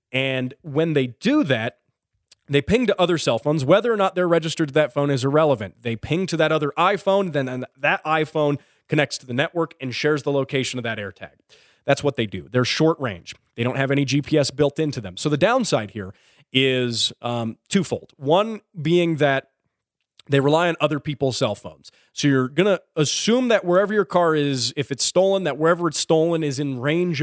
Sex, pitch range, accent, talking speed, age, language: male, 130-175 Hz, American, 205 wpm, 30-49, English